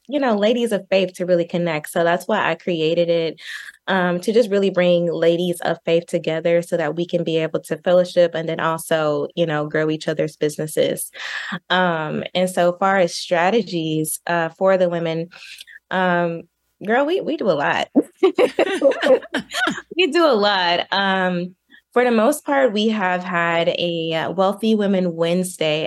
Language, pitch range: English, 165-190 Hz